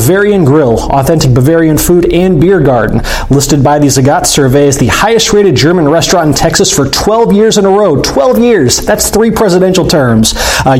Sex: male